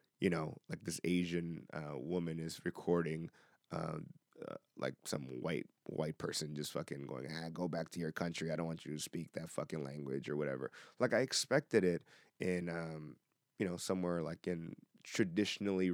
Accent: American